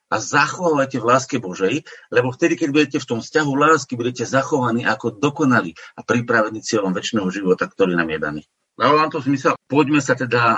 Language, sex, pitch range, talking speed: Slovak, male, 100-130 Hz, 180 wpm